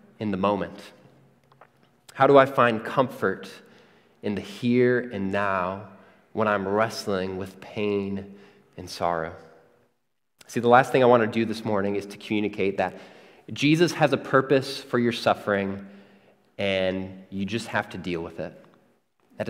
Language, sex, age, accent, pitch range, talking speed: English, male, 20-39, American, 95-115 Hz, 155 wpm